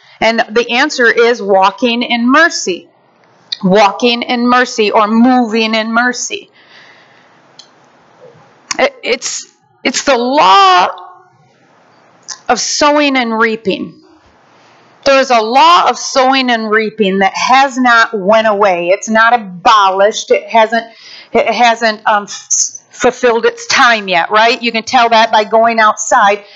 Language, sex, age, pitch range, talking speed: English, female, 40-59, 220-280 Hz, 125 wpm